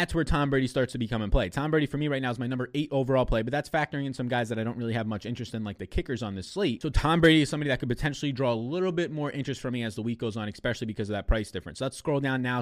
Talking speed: 340 wpm